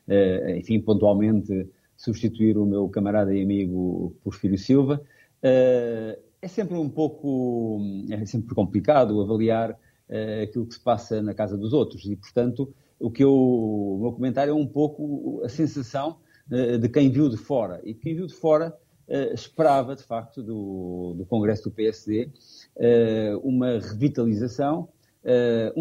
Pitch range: 105-145 Hz